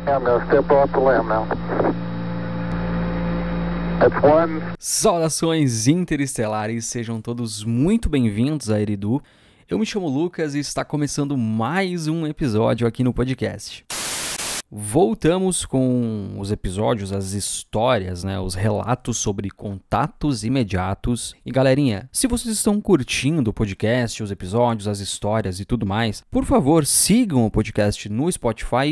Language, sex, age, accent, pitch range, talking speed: Portuguese, male, 20-39, Brazilian, 110-150 Hz, 115 wpm